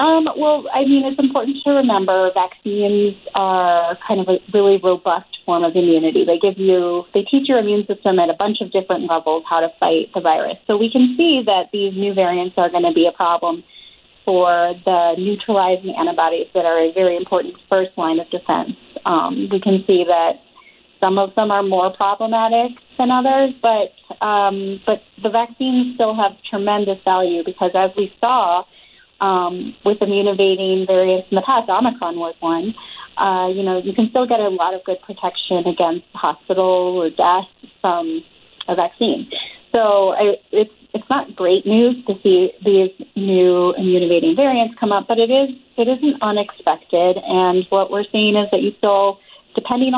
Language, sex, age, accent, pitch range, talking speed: English, female, 30-49, American, 180-220 Hz, 180 wpm